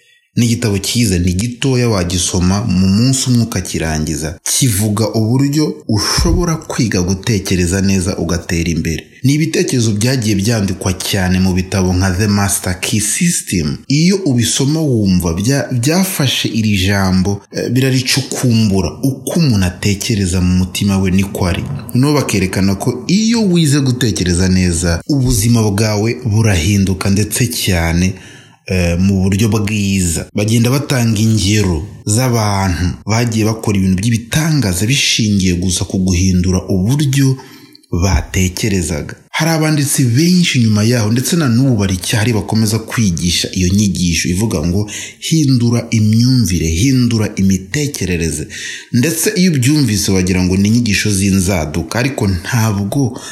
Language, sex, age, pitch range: English, male, 30-49, 95-125 Hz